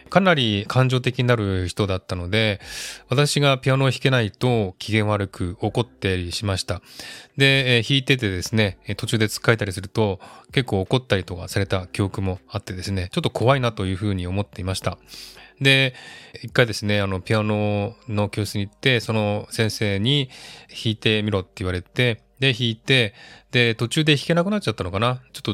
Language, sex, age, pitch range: Japanese, male, 20-39, 95-120 Hz